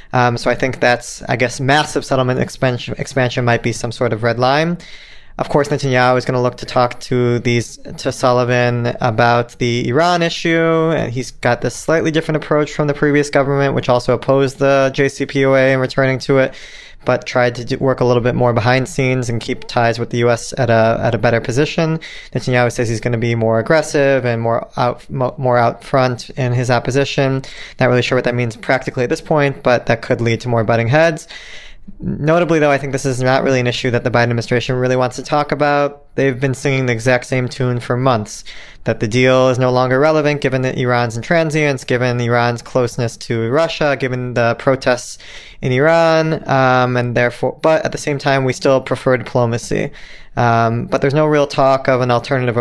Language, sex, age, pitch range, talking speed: English, male, 20-39, 120-140 Hz, 210 wpm